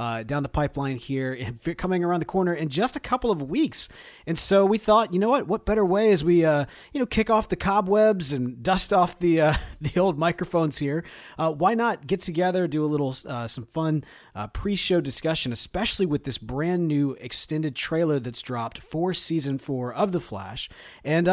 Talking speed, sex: 205 wpm, male